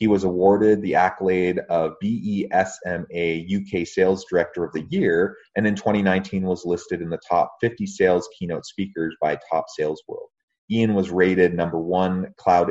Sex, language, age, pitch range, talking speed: male, English, 30-49, 90-110 Hz, 165 wpm